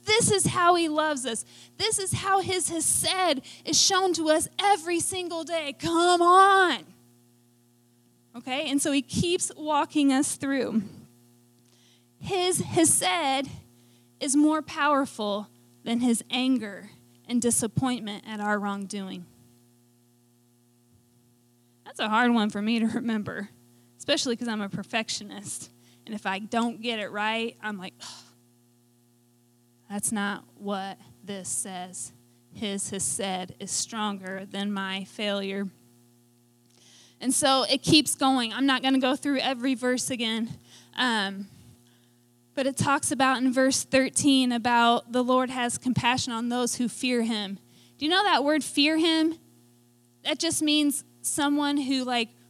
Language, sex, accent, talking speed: English, female, American, 140 wpm